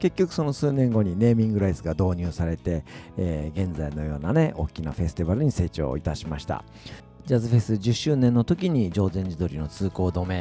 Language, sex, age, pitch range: Japanese, male, 50-69, 85-130 Hz